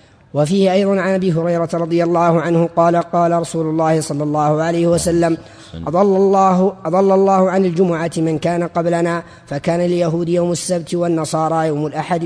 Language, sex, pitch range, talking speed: Arabic, female, 160-180 Hz, 155 wpm